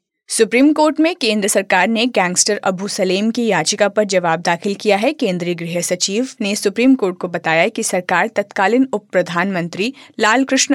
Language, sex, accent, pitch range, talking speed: Hindi, female, native, 185-235 Hz, 170 wpm